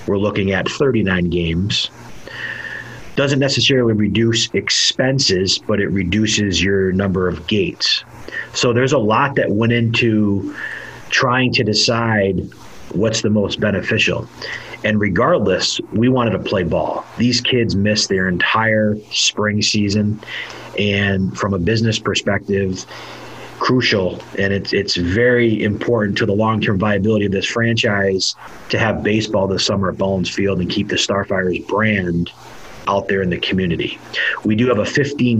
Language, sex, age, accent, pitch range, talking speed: English, male, 30-49, American, 95-115 Hz, 140 wpm